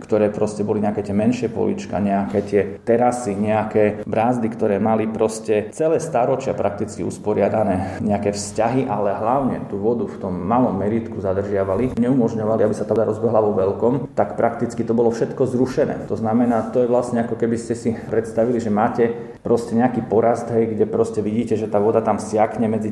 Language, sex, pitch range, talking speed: Slovak, male, 105-115 Hz, 175 wpm